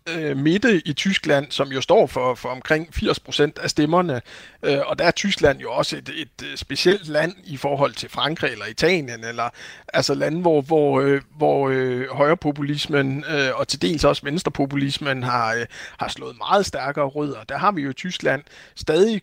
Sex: male